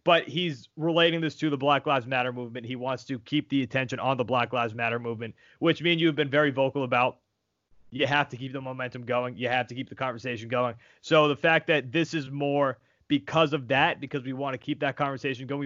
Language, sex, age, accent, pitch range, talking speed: English, male, 30-49, American, 125-175 Hz, 235 wpm